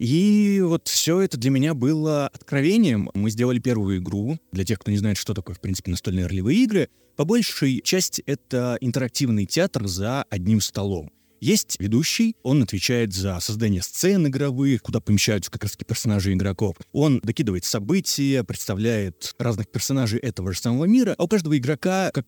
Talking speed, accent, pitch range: 170 wpm, native, 105-145 Hz